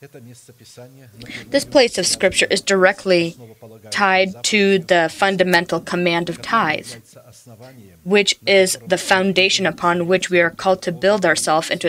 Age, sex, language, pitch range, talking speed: 20-39, female, English, 155-195 Hz, 130 wpm